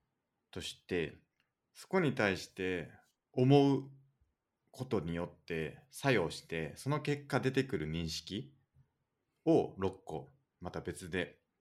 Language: Japanese